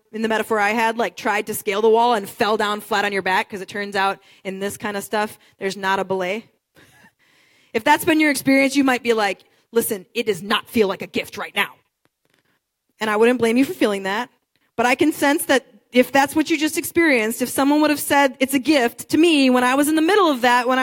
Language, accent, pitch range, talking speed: English, American, 215-280 Hz, 255 wpm